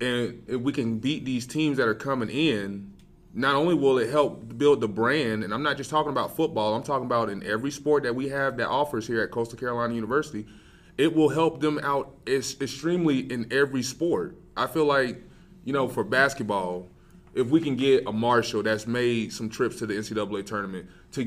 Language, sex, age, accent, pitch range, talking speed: English, male, 20-39, American, 110-140 Hz, 205 wpm